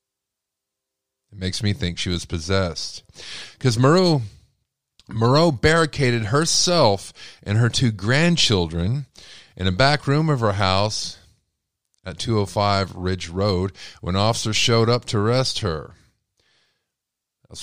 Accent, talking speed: American, 125 wpm